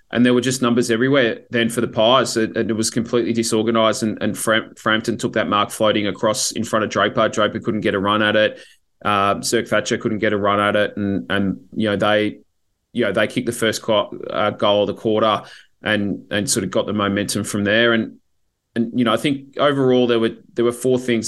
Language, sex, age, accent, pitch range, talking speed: English, male, 20-39, Australian, 105-115 Hz, 230 wpm